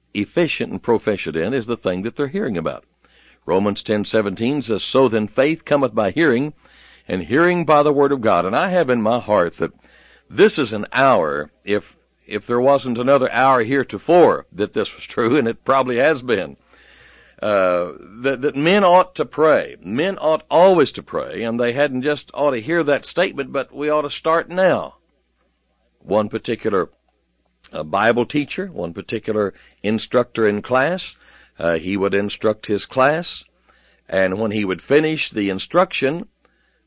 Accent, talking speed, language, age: American, 175 wpm, English, 60-79